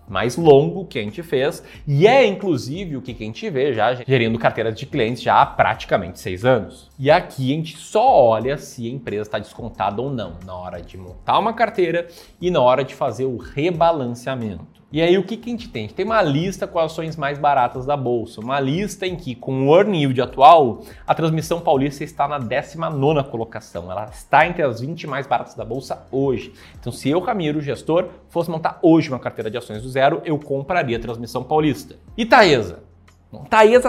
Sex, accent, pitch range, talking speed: male, Brazilian, 120-180 Hz, 210 wpm